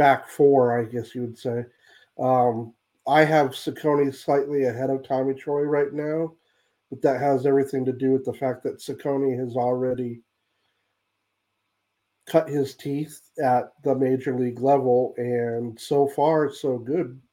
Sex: male